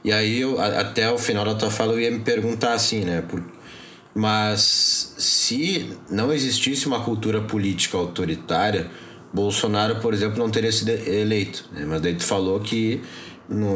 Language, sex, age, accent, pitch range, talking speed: Portuguese, male, 20-39, Brazilian, 95-115 Hz, 165 wpm